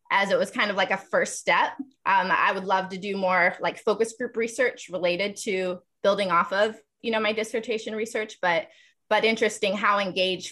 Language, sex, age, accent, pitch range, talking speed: English, female, 20-39, American, 180-230 Hz, 200 wpm